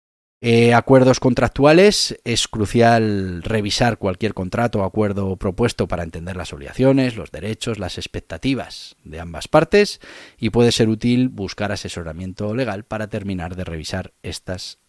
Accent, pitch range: Spanish, 85-115 Hz